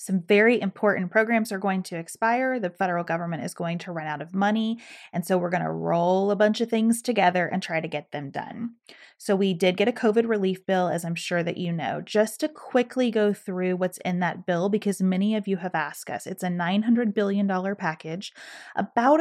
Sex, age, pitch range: female, 30-49, 175-205 Hz